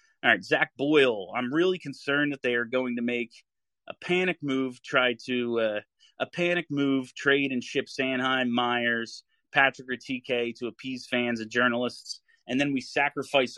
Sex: male